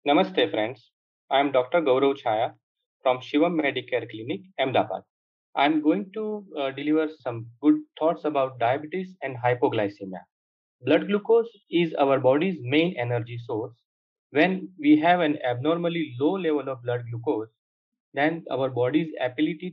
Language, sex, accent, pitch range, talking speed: English, male, Indian, 125-160 Hz, 145 wpm